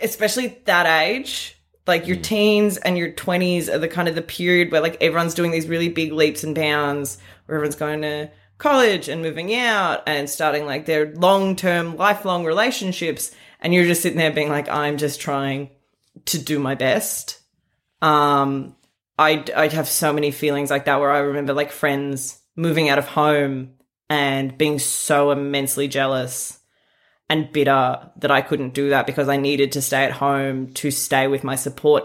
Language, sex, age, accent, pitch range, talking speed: English, female, 20-39, Australian, 140-160 Hz, 180 wpm